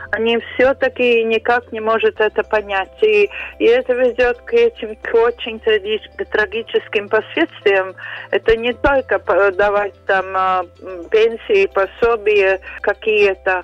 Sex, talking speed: female, 105 wpm